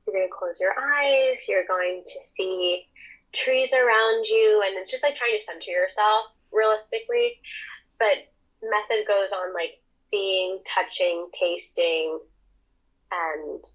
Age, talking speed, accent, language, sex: 10-29, 135 wpm, American, English, female